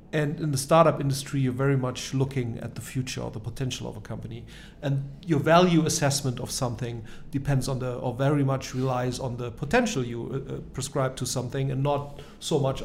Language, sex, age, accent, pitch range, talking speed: English, male, 40-59, German, 130-160 Hz, 200 wpm